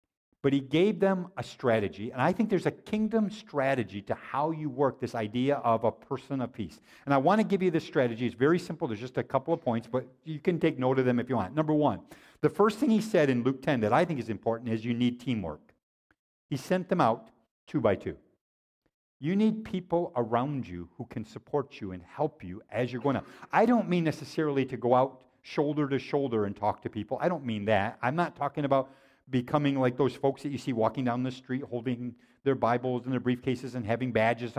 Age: 50-69